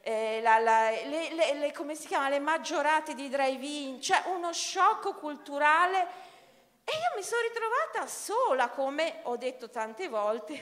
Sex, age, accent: female, 40-59, native